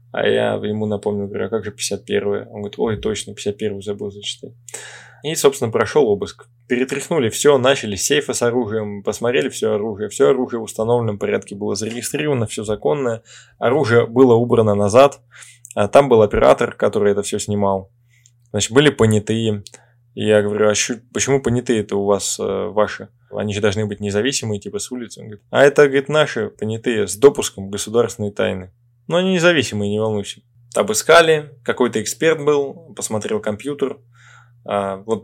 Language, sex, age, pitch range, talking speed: Russian, male, 10-29, 105-130 Hz, 160 wpm